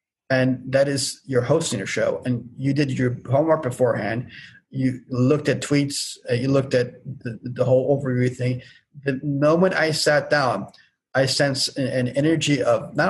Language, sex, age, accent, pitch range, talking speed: English, male, 30-49, American, 130-150 Hz, 170 wpm